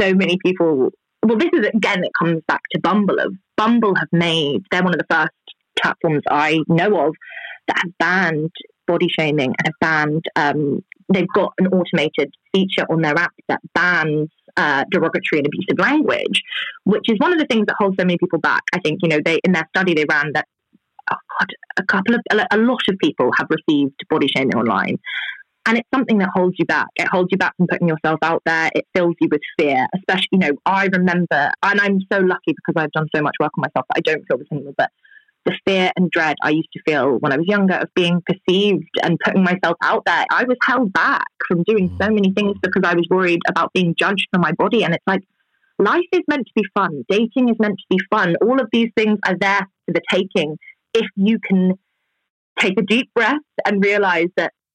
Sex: female